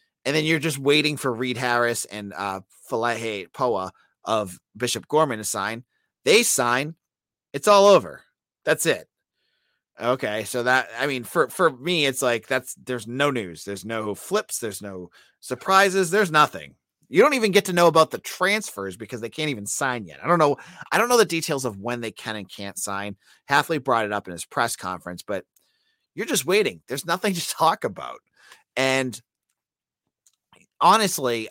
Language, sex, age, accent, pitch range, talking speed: English, male, 30-49, American, 110-180 Hz, 180 wpm